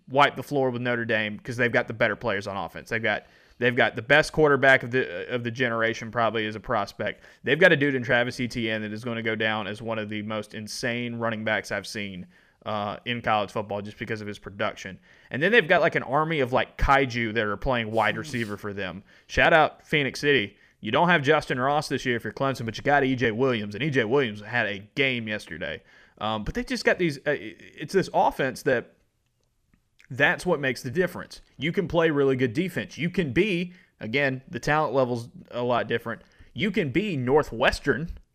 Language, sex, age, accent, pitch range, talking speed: English, male, 30-49, American, 110-140 Hz, 220 wpm